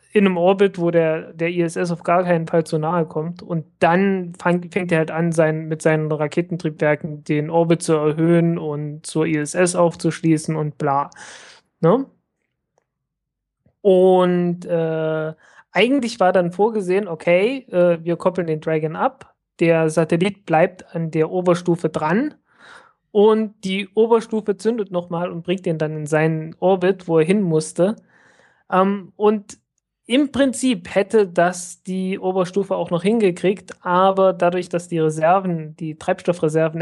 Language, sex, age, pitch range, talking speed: German, male, 30-49, 160-190 Hz, 140 wpm